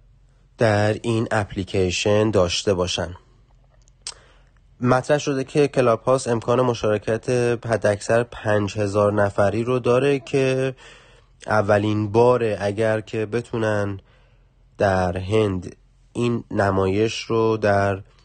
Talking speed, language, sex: 95 wpm, Persian, male